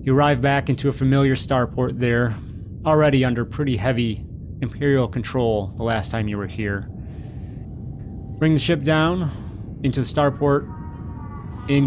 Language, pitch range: English, 115-145 Hz